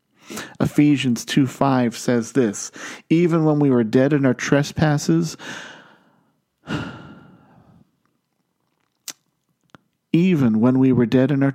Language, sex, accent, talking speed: English, male, American, 105 wpm